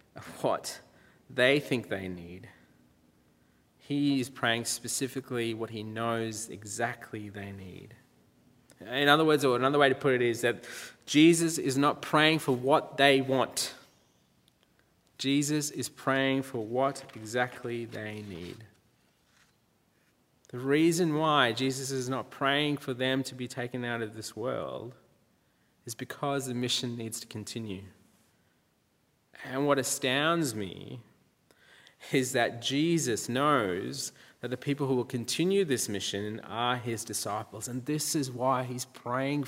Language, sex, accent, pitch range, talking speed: English, male, Australian, 110-135 Hz, 135 wpm